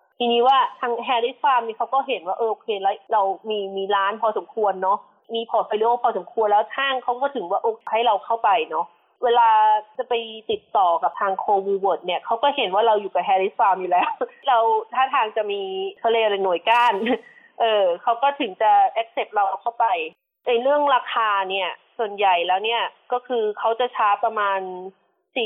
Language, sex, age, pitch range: Thai, female, 20-39, 195-240 Hz